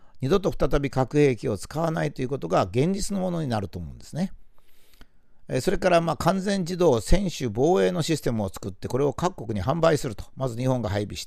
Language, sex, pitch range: Japanese, male, 115-180 Hz